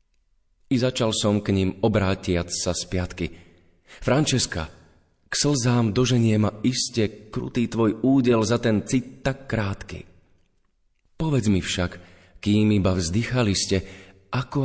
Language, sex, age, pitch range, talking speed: Slovak, male, 30-49, 90-115 Hz, 125 wpm